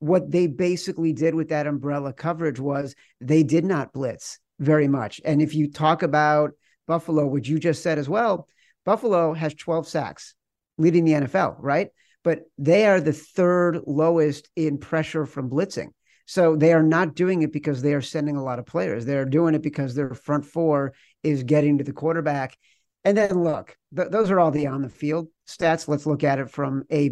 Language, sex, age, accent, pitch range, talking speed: English, male, 50-69, American, 145-175 Hz, 195 wpm